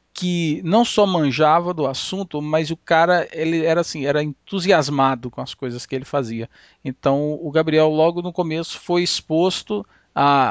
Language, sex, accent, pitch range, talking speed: Portuguese, male, Brazilian, 140-175 Hz, 165 wpm